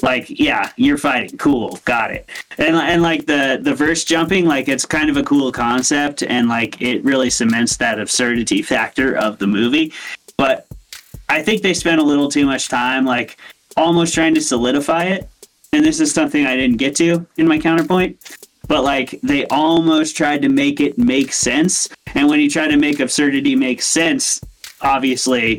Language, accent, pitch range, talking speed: English, American, 125-185 Hz, 185 wpm